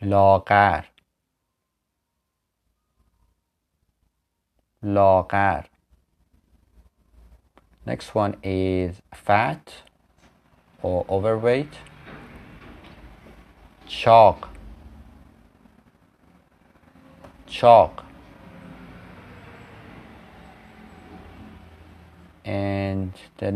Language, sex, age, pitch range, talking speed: Persian, male, 30-49, 85-100 Hz, 35 wpm